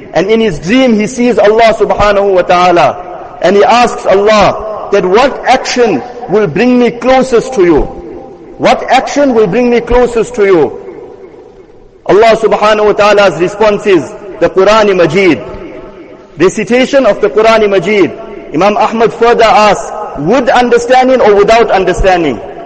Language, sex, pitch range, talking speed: English, male, 205-245 Hz, 145 wpm